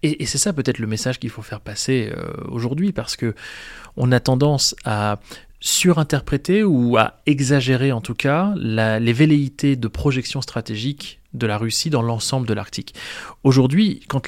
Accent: French